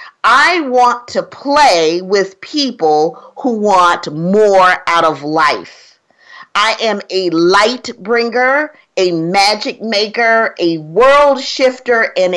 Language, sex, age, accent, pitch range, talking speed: English, female, 40-59, American, 185-260 Hz, 115 wpm